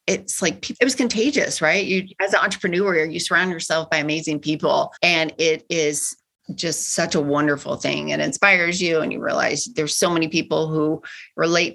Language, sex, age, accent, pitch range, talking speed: English, female, 40-59, American, 160-215 Hz, 185 wpm